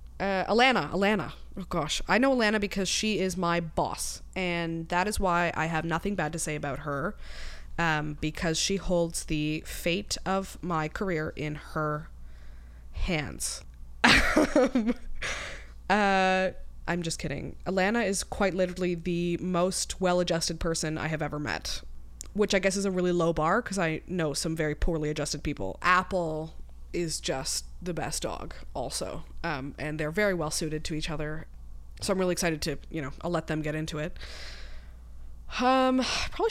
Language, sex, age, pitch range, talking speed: English, female, 20-39, 150-190 Hz, 165 wpm